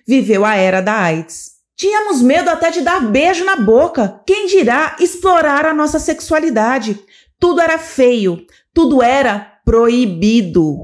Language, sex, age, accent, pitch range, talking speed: Portuguese, female, 30-49, Brazilian, 215-325 Hz, 140 wpm